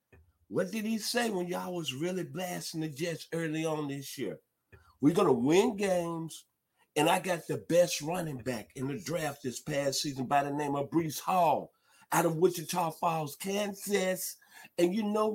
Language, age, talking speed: English, 50-69, 185 wpm